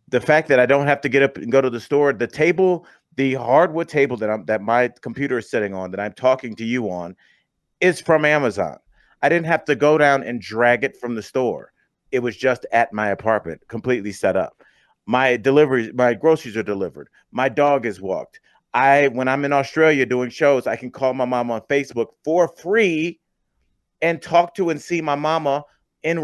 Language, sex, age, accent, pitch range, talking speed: English, male, 40-59, American, 125-175 Hz, 210 wpm